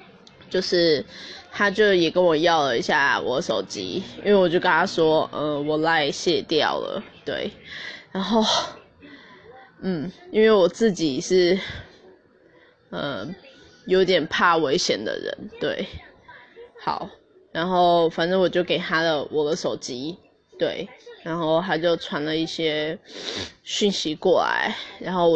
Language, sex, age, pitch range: English, female, 10-29, 160-200 Hz